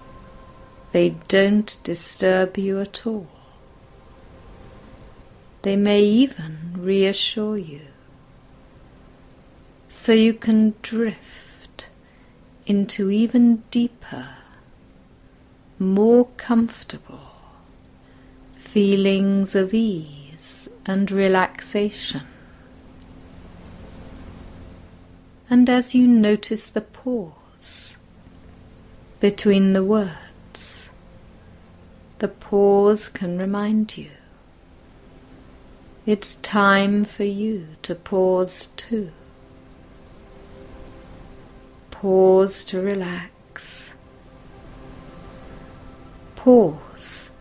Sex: female